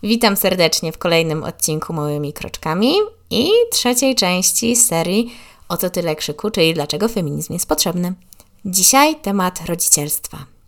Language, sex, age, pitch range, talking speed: Polish, female, 20-39, 160-220 Hz, 130 wpm